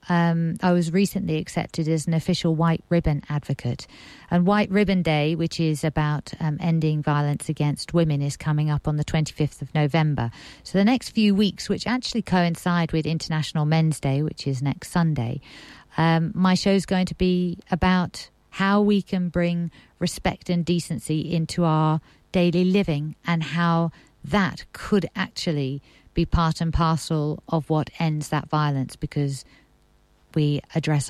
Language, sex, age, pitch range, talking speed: English, female, 50-69, 140-175 Hz, 160 wpm